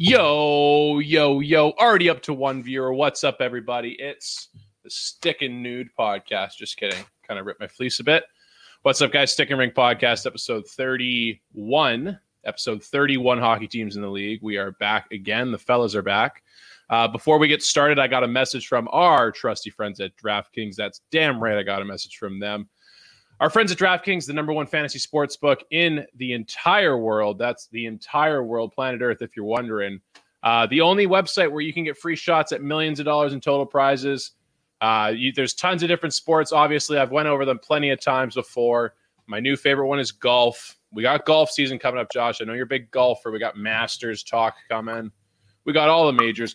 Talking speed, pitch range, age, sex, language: 200 wpm, 115-150 Hz, 20-39, male, English